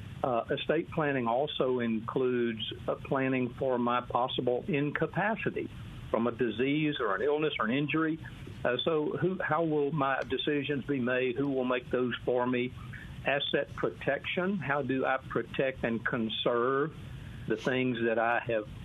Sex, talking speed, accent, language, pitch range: male, 155 wpm, American, English, 120-145 Hz